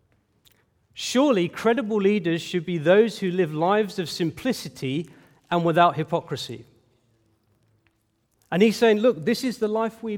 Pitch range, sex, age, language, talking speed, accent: 125-210 Hz, male, 40-59, English, 135 wpm, British